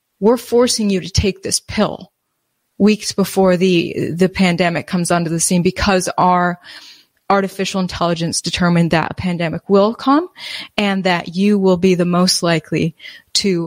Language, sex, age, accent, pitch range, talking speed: English, female, 20-39, American, 170-195 Hz, 155 wpm